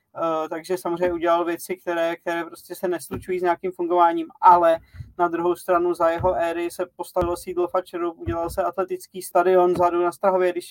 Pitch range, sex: 170-185 Hz, male